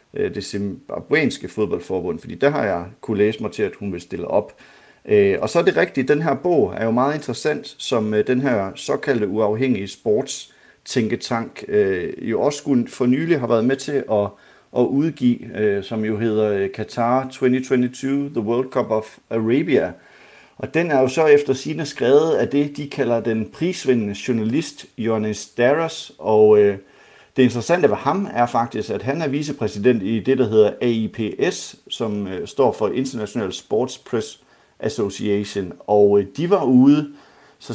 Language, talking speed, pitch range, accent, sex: Danish, 155 wpm, 105-140 Hz, native, male